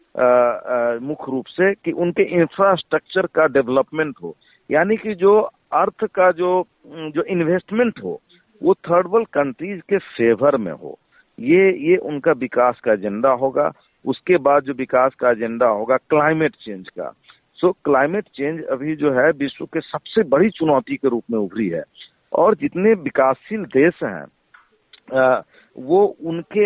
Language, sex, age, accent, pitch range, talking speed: Hindi, male, 50-69, native, 135-190 Hz, 150 wpm